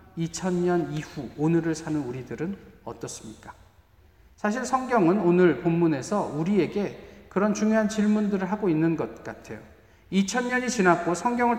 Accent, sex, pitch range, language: native, male, 135-210 Hz, Korean